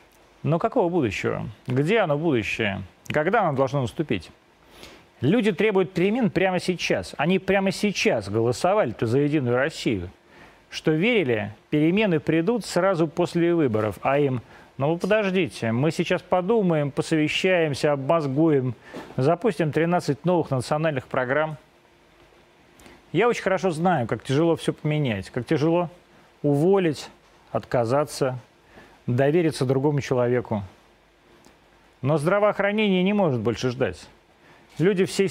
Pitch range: 130-180 Hz